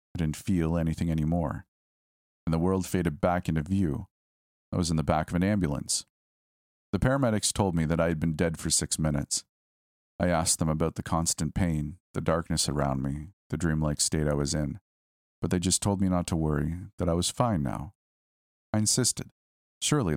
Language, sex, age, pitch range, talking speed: English, male, 40-59, 70-90 Hz, 195 wpm